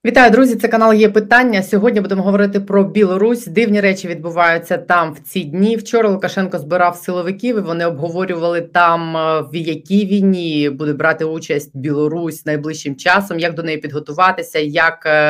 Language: Ukrainian